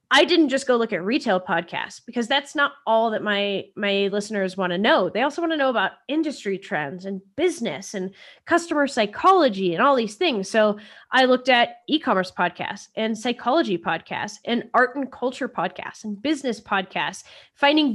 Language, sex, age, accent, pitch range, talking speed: English, female, 20-39, American, 205-255 Hz, 180 wpm